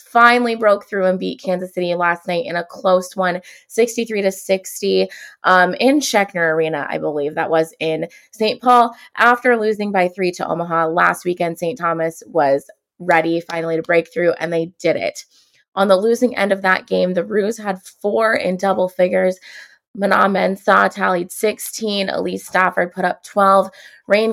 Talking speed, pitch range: 175 wpm, 170-205 Hz